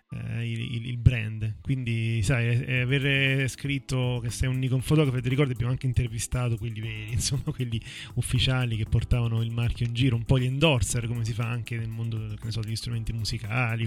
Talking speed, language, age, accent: 185 wpm, Italian, 30-49, native